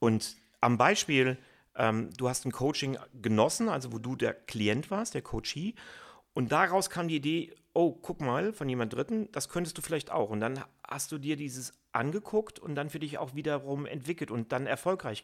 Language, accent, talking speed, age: German, German, 195 wpm, 40-59